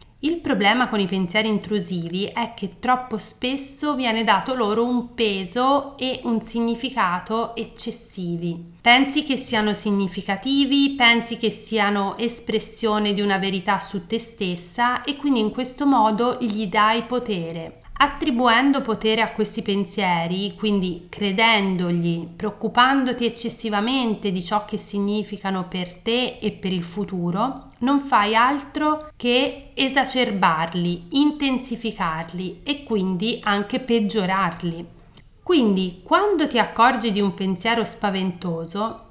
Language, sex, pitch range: Italian, female, 195-255 Hz